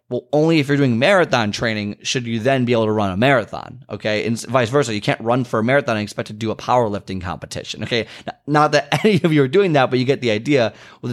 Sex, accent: male, American